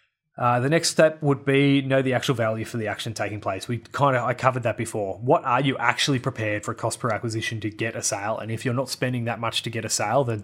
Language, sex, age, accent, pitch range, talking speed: English, male, 20-39, Australian, 110-130 Hz, 270 wpm